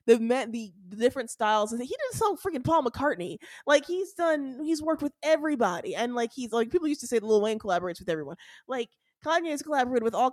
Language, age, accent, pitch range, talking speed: English, 20-39, American, 180-255 Hz, 225 wpm